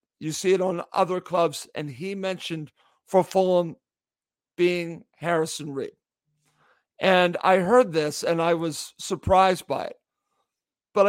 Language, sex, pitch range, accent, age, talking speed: English, male, 165-190 Hz, American, 50-69, 135 wpm